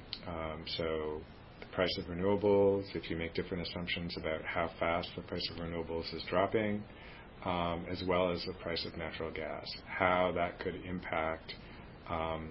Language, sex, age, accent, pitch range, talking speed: English, male, 40-59, American, 85-105 Hz, 165 wpm